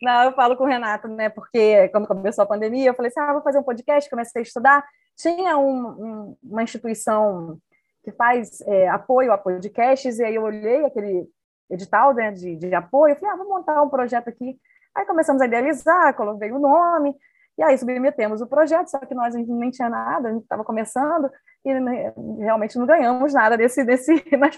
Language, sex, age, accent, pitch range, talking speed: Portuguese, female, 20-39, Brazilian, 220-300 Hz, 210 wpm